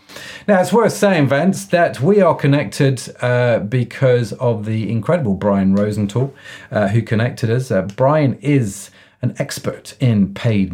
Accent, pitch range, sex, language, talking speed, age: British, 105-140 Hz, male, English, 150 wpm, 40-59